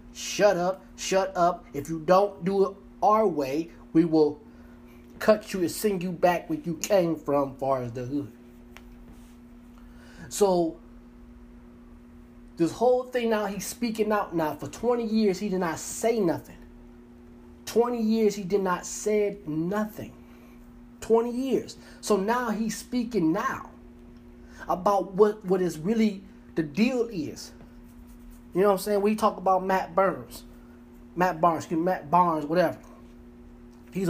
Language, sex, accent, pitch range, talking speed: English, male, American, 120-185 Hz, 145 wpm